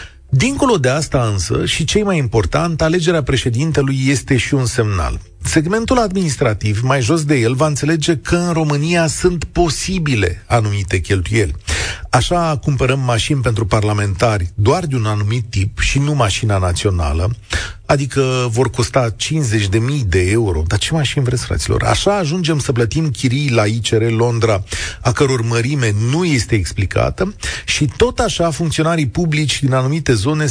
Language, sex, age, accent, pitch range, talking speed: Romanian, male, 40-59, native, 105-150 Hz, 150 wpm